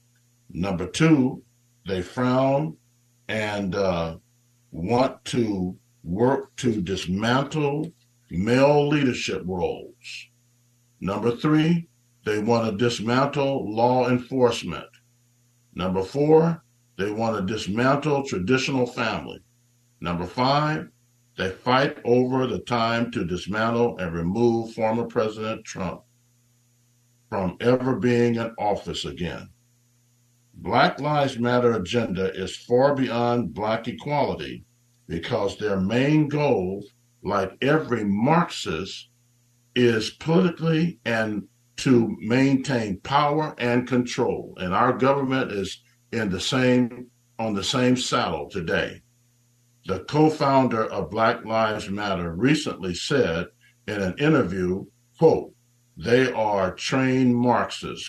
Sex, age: male, 60-79